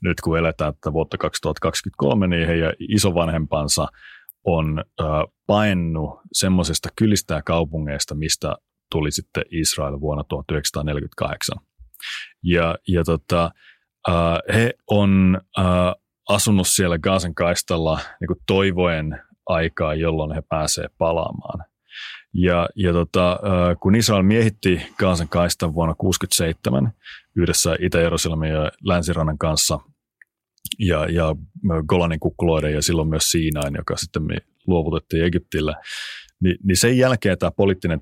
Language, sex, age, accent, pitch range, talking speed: Finnish, male, 30-49, native, 80-90 Hz, 110 wpm